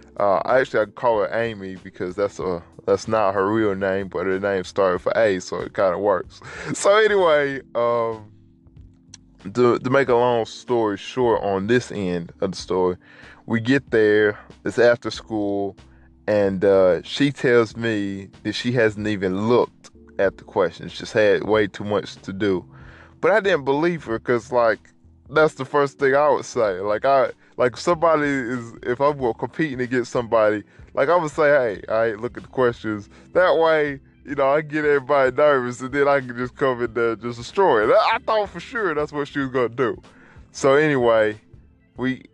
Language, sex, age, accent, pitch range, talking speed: English, male, 10-29, American, 95-130 Hz, 190 wpm